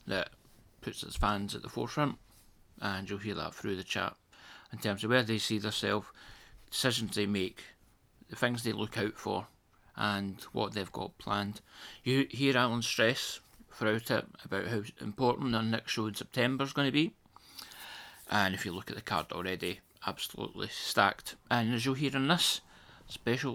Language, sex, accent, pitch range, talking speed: English, male, British, 100-130 Hz, 180 wpm